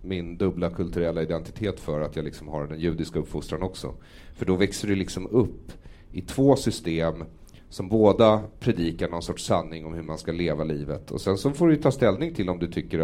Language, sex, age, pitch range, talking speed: English, male, 30-49, 85-105 Hz, 205 wpm